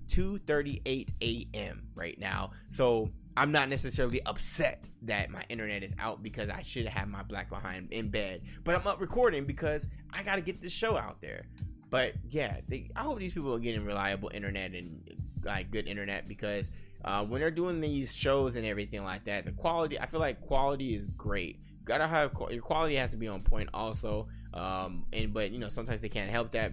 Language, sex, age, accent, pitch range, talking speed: English, male, 20-39, American, 100-130 Hz, 200 wpm